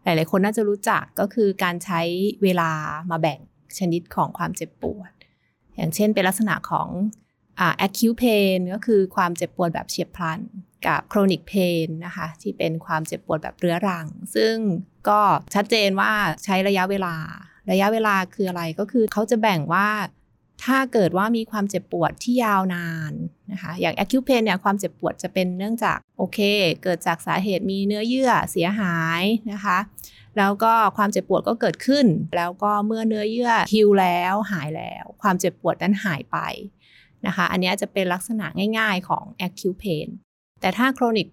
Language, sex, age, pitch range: Thai, female, 20-39, 175-215 Hz